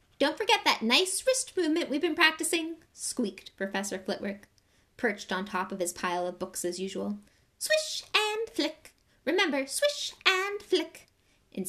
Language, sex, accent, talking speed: English, female, American, 155 wpm